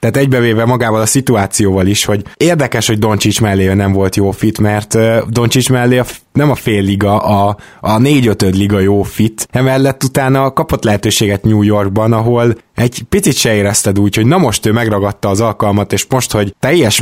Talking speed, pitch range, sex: 185 wpm, 100-115 Hz, male